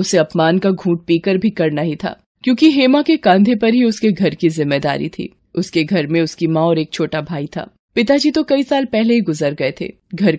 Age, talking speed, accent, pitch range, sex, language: 20-39, 230 wpm, native, 180-245 Hz, female, Hindi